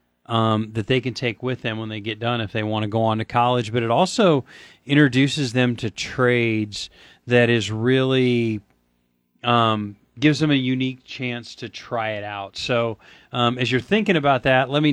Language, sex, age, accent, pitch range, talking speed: English, male, 40-59, American, 110-135 Hz, 195 wpm